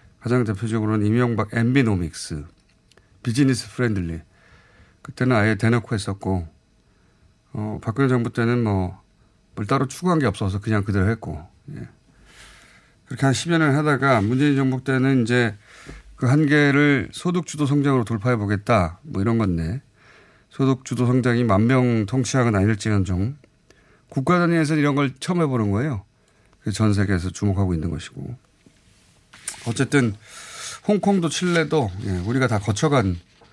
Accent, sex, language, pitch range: native, male, Korean, 100-135 Hz